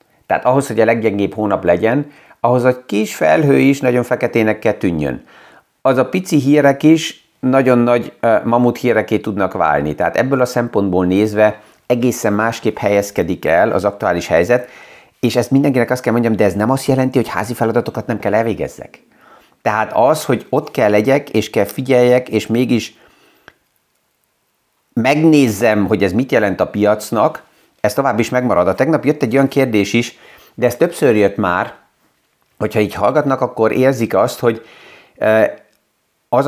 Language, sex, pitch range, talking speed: Hungarian, male, 110-130 Hz, 160 wpm